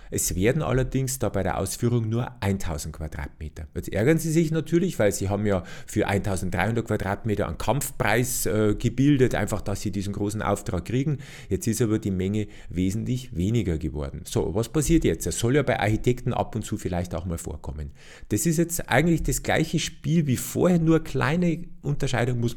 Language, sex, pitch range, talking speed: German, male, 100-135 Hz, 190 wpm